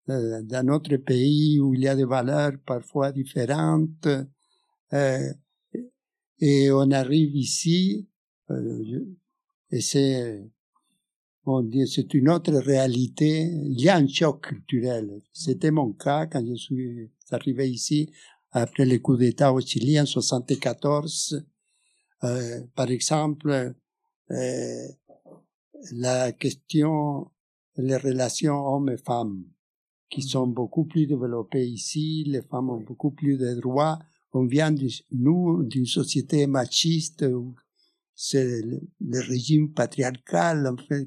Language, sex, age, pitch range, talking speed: French, male, 60-79, 125-155 Hz, 125 wpm